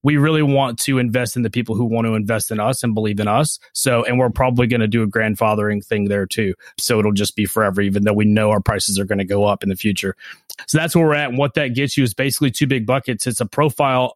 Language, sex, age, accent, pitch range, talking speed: English, male, 30-49, American, 115-135 Hz, 285 wpm